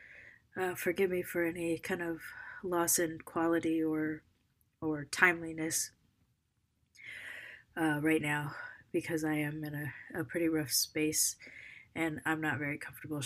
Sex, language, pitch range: female, English, 145-160 Hz